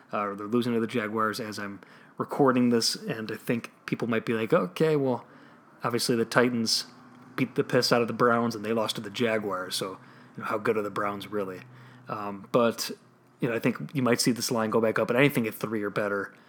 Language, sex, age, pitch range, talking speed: English, male, 20-39, 110-135 Hz, 235 wpm